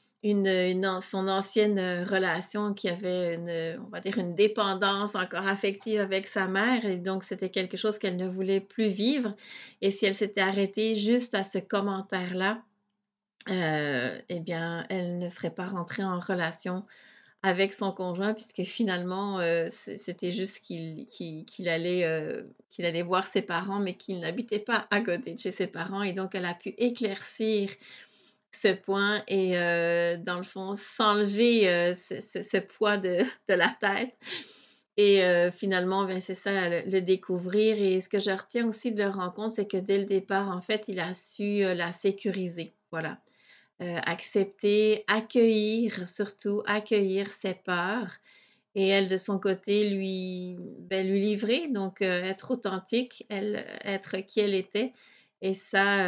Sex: female